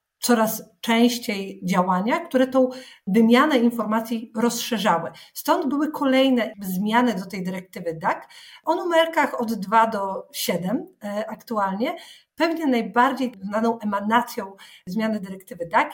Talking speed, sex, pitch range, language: 115 wpm, female, 215-260 Hz, Polish